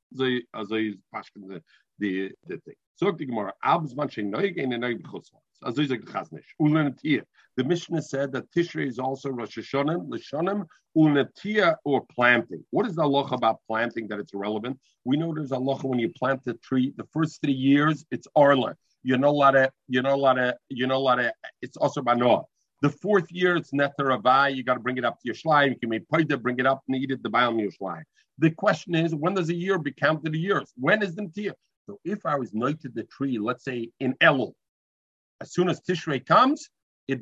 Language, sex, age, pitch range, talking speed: English, male, 50-69, 125-160 Hz, 200 wpm